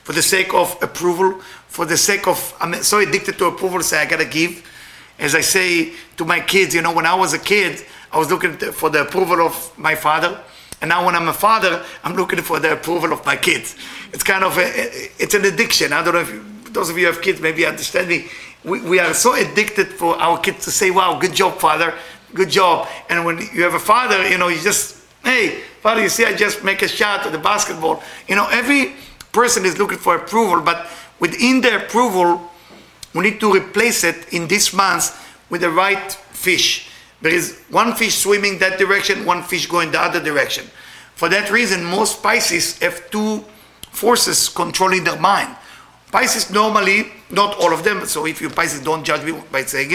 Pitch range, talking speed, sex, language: 170-205 Hz, 210 wpm, male, English